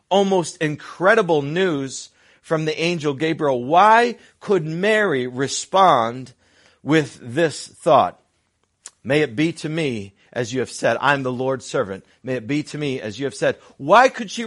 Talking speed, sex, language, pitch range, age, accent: 160 wpm, male, English, 130-180 Hz, 40-59, American